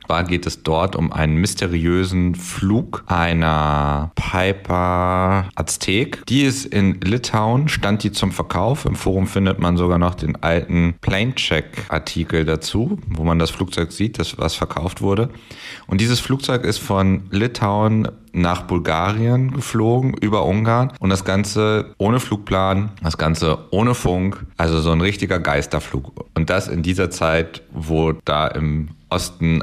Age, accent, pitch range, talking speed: 30-49, German, 80-105 Hz, 145 wpm